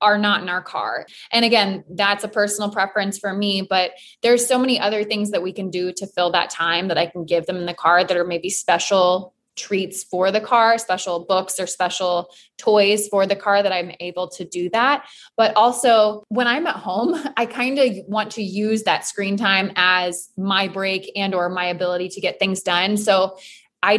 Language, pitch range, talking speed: English, 180-210 Hz, 215 wpm